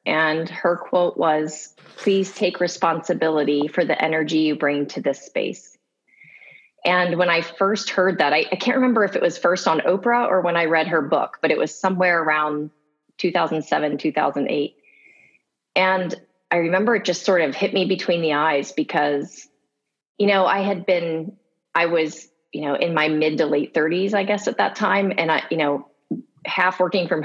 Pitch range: 155-185 Hz